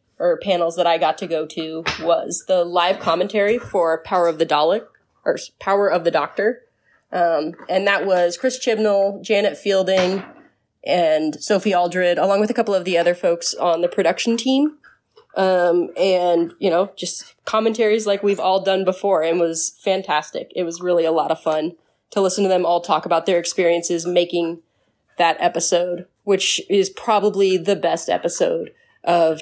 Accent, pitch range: American, 170-205 Hz